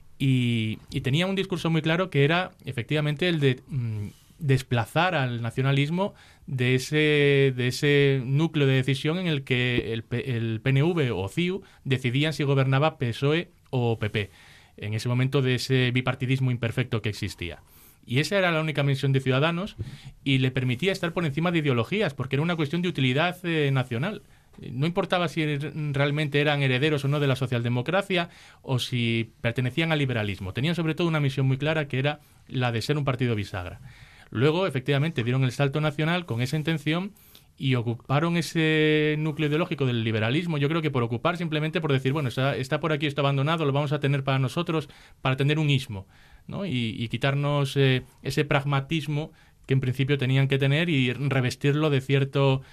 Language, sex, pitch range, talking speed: Spanish, male, 125-155 Hz, 180 wpm